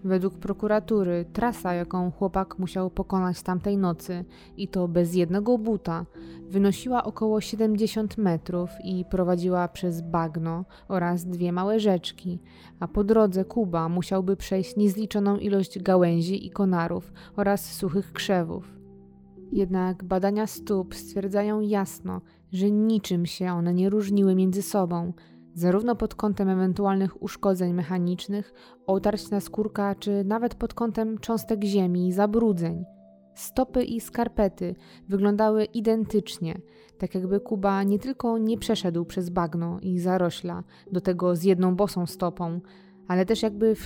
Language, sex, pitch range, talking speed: Polish, female, 180-210 Hz, 130 wpm